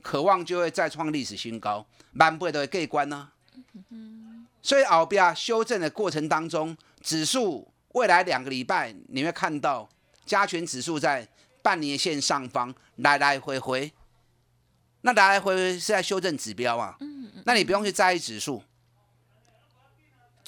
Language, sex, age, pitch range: Chinese, male, 30-49, 125-195 Hz